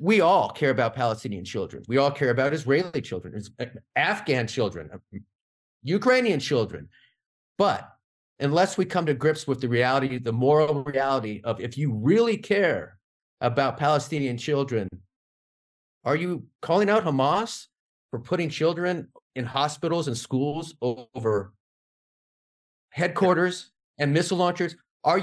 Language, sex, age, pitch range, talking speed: English, male, 30-49, 130-175 Hz, 130 wpm